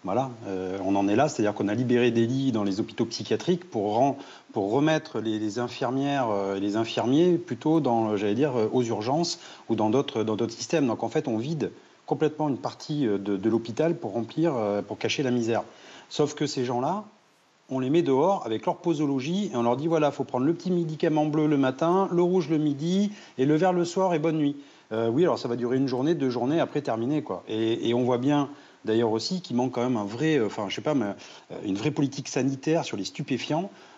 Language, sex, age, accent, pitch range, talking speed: French, male, 40-59, French, 110-150 Hz, 235 wpm